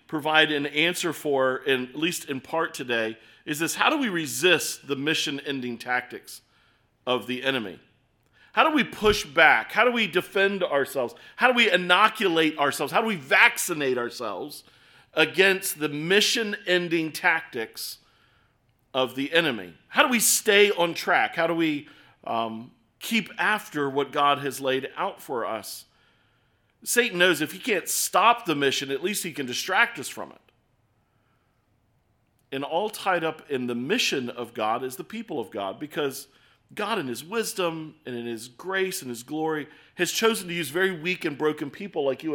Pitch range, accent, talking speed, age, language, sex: 130-185 Hz, American, 170 wpm, 40-59, English, male